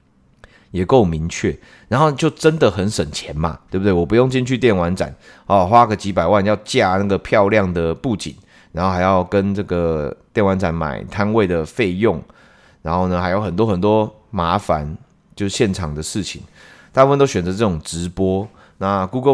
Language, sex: Chinese, male